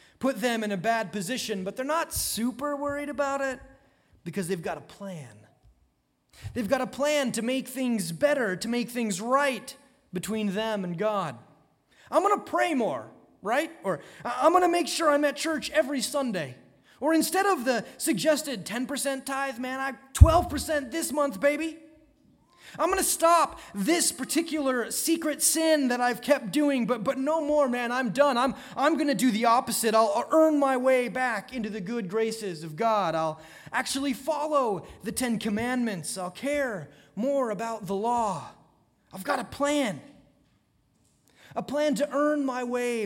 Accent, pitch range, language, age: American, 215-285 Hz, English, 30-49